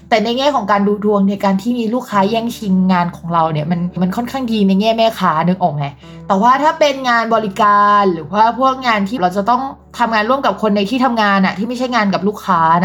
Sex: female